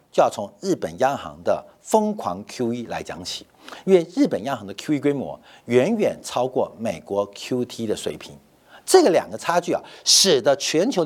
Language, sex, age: Chinese, male, 50-69